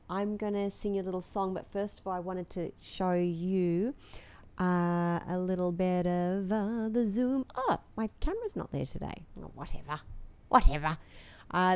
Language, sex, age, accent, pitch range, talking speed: English, female, 40-59, Australian, 160-205 Hz, 175 wpm